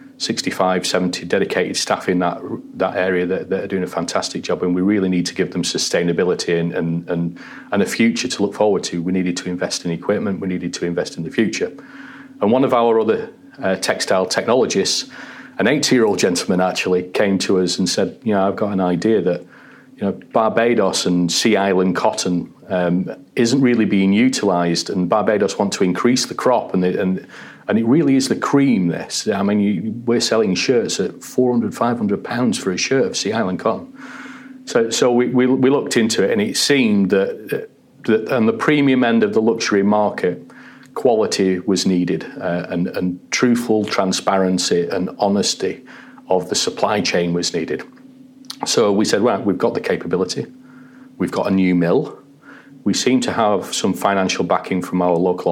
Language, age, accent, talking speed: English, 40-59, British, 190 wpm